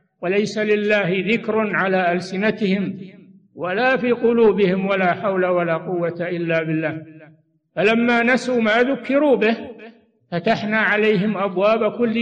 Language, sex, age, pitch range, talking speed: Arabic, male, 60-79, 190-225 Hz, 115 wpm